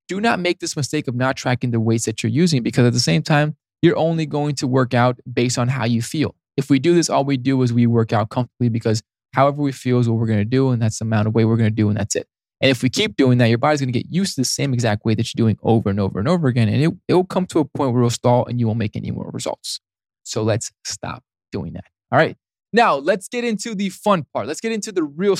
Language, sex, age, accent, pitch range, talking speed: English, male, 20-39, American, 120-165 Hz, 300 wpm